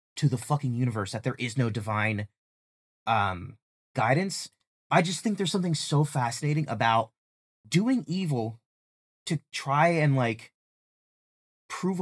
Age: 30-49